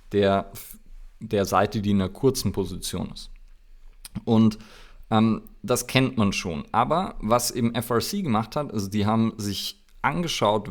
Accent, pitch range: German, 100-120 Hz